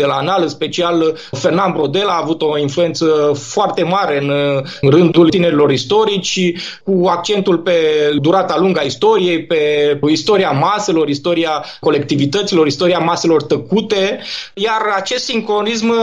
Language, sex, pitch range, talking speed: Romanian, male, 170-205 Hz, 130 wpm